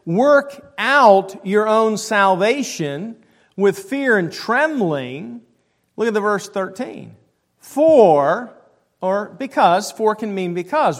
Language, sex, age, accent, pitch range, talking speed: English, male, 50-69, American, 185-250 Hz, 115 wpm